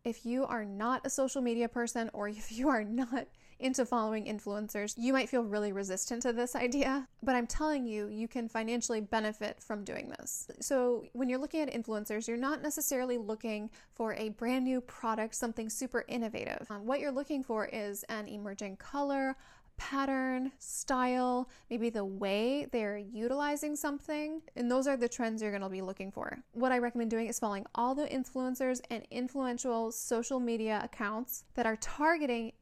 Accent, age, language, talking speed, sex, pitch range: American, 10-29, English, 180 wpm, female, 220-260 Hz